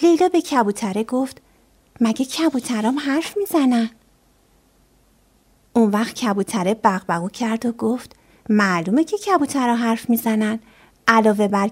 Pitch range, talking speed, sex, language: 205-290 Hz, 115 wpm, female, Persian